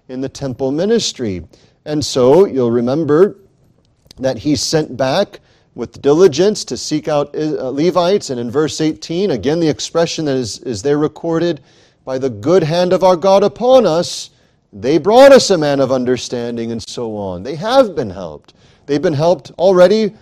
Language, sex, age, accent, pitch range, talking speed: English, male, 40-59, American, 125-175 Hz, 170 wpm